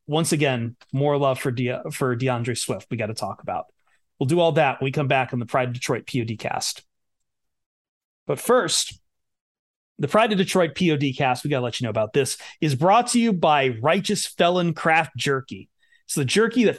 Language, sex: English, male